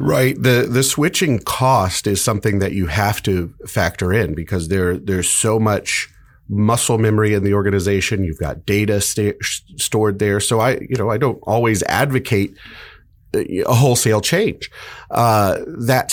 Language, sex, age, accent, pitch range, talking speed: English, male, 30-49, American, 100-130 Hz, 155 wpm